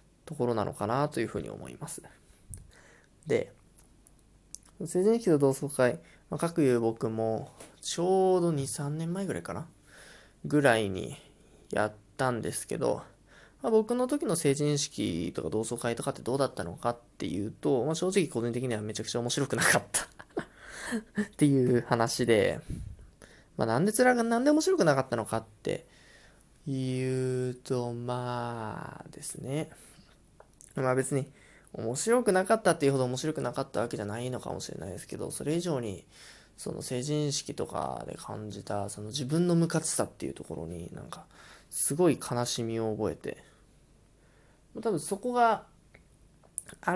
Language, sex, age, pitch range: Japanese, male, 20-39, 115-165 Hz